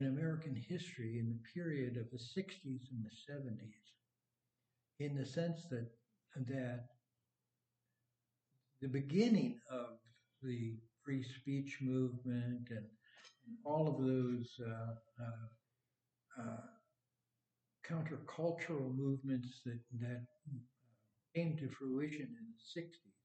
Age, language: 60-79, English